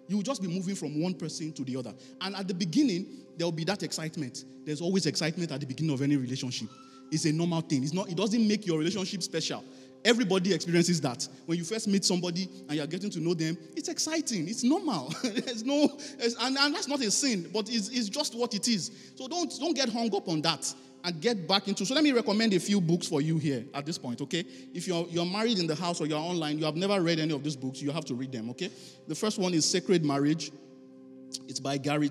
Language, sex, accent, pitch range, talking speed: English, male, Nigerian, 130-185 Hz, 250 wpm